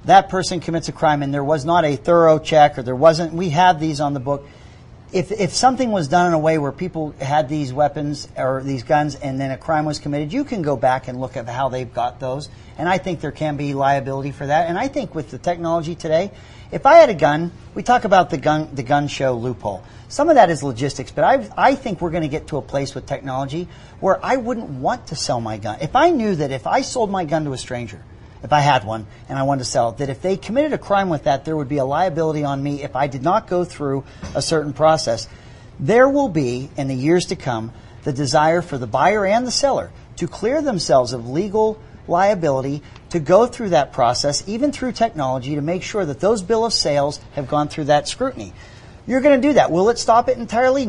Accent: American